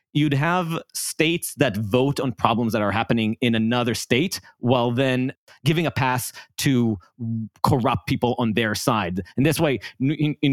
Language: English